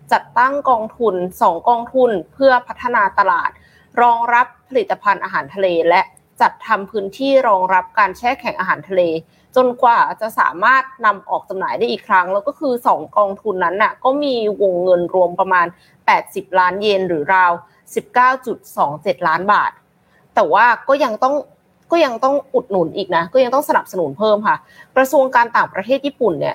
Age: 20-39